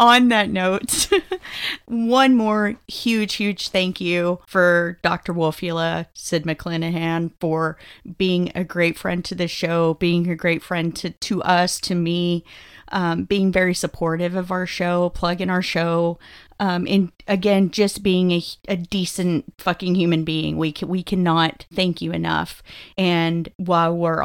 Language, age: English, 30-49